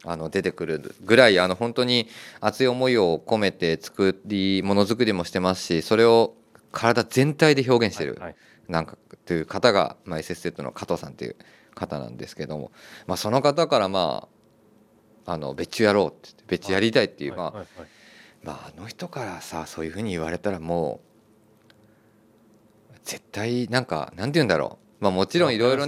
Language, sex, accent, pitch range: Japanese, male, native, 90-120 Hz